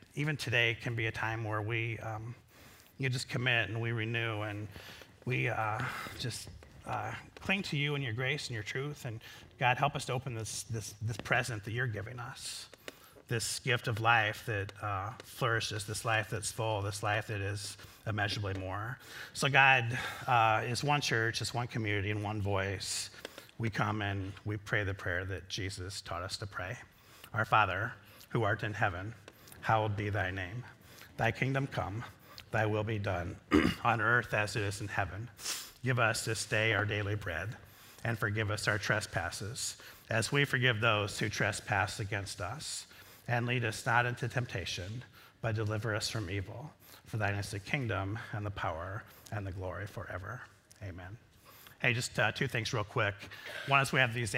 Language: English